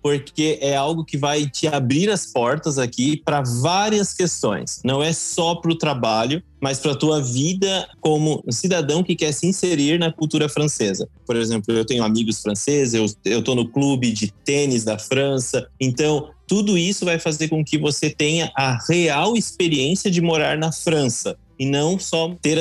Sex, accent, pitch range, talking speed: male, Brazilian, 115-155 Hz, 180 wpm